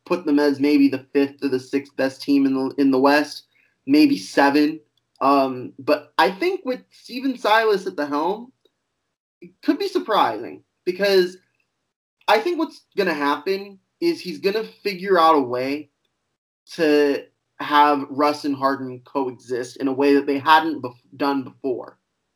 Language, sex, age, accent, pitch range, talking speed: English, male, 20-39, American, 140-220 Hz, 165 wpm